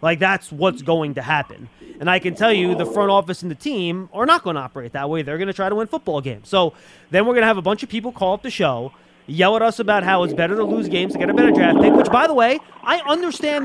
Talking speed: 300 wpm